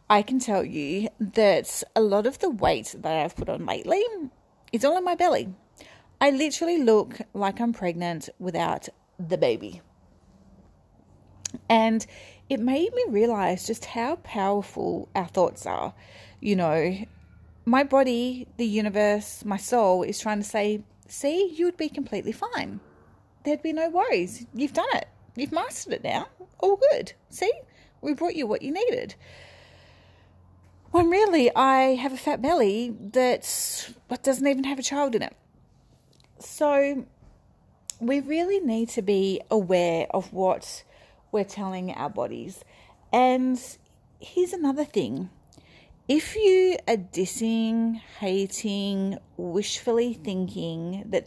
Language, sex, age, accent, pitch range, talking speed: English, female, 30-49, Australian, 195-280 Hz, 135 wpm